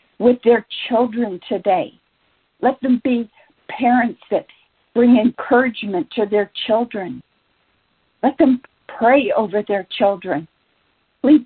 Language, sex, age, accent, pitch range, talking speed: English, female, 50-69, American, 195-240 Hz, 110 wpm